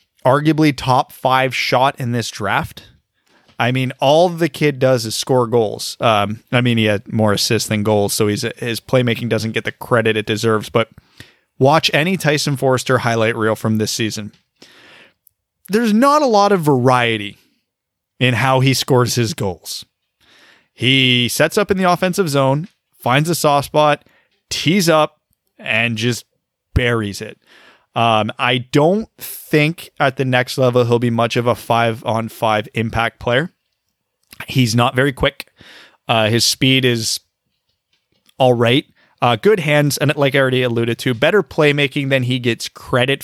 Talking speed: 160 wpm